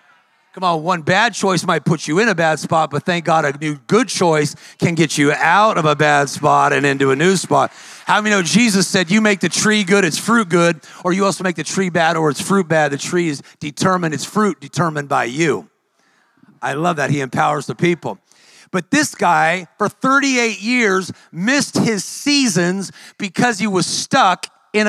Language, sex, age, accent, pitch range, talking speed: English, male, 40-59, American, 170-220 Hz, 205 wpm